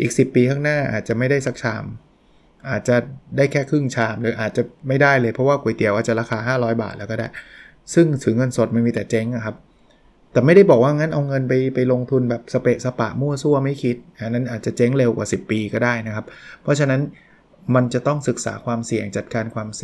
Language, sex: Thai, male